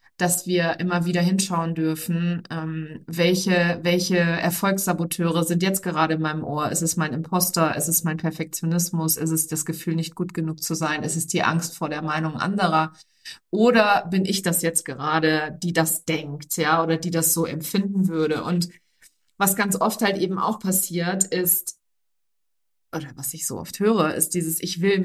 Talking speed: 180 wpm